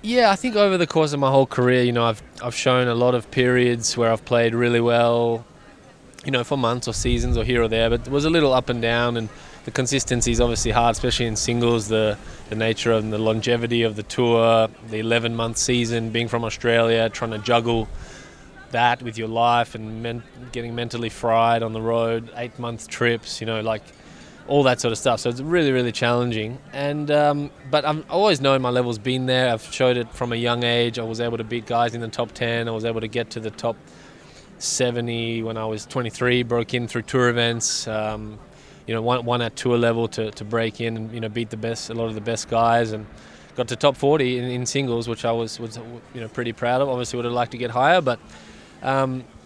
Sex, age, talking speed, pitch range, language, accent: male, 20-39, 230 wpm, 115-125 Hz, English, Australian